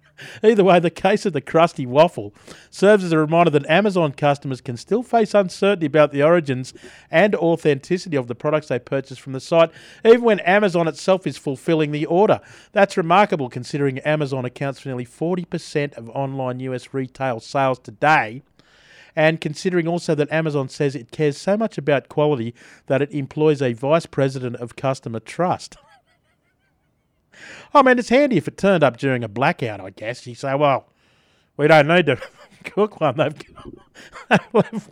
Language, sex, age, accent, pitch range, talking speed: English, male, 40-59, Australian, 130-175 Hz, 170 wpm